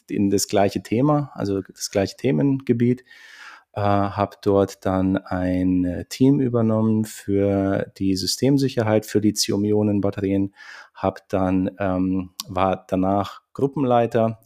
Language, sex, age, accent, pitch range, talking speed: German, male, 40-59, German, 95-115 Hz, 100 wpm